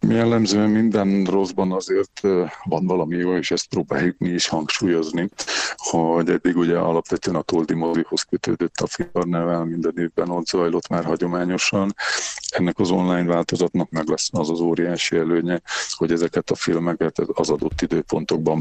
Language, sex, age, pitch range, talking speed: Hungarian, male, 50-69, 85-95 Hz, 150 wpm